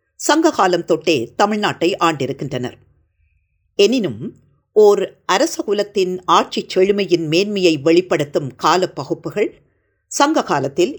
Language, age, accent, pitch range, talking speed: Tamil, 50-69, native, 155-225 Hz, 75 wpm